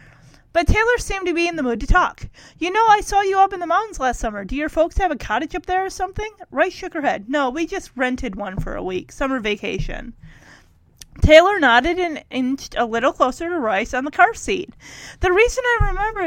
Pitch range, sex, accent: 255-360 Hz, female, American